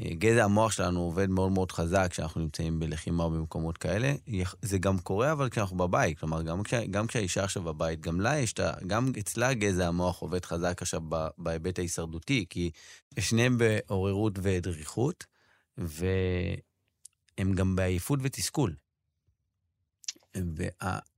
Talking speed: 135 wpm